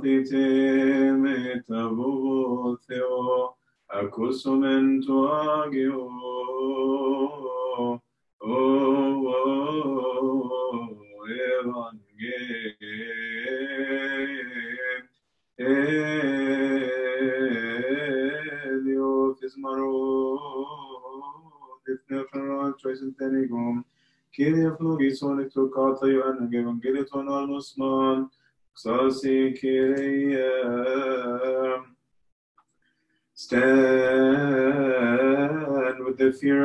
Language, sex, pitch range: English, male, 130-135 Hz